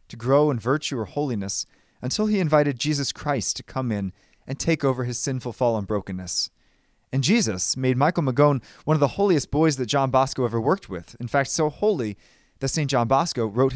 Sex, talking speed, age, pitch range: male, 205 wpm, 30-49, 120-165 Hz